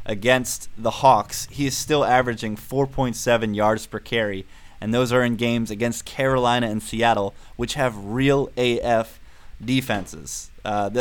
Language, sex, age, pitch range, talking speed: English, male, 20-39, 100-115 Hz, 140 wpm